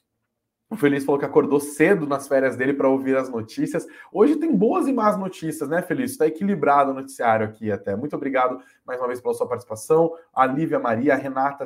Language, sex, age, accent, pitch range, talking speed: Portuguese, male, 20-39, Brazilian, 130-165 Hz, 200 wpm